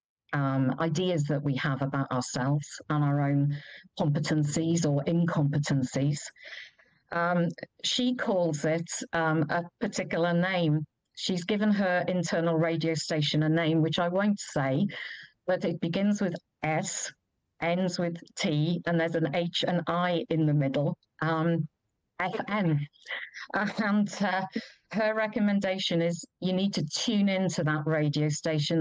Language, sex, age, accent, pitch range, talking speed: English, female, 50-69, British, 155-185 Hz, 135 wpm